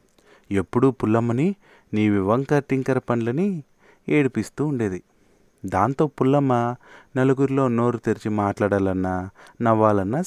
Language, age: Telugu, 30-49